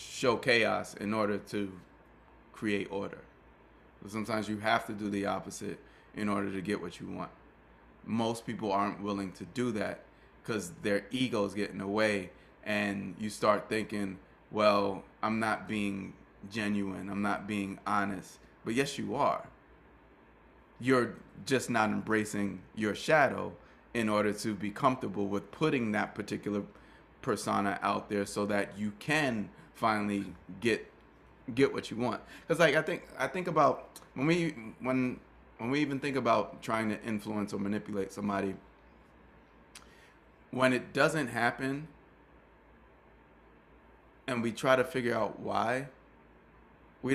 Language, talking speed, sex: English, 145 wpm, male